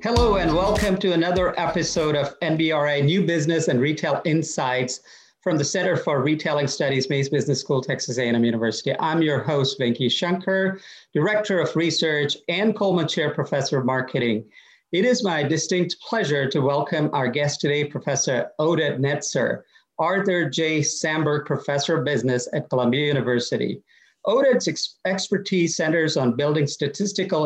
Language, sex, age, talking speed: English, male, 40-59, 145 wpm